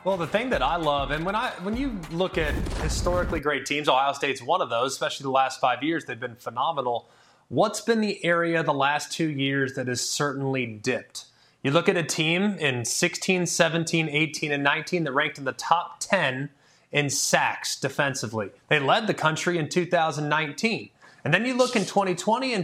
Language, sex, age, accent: English, male, 30-49, American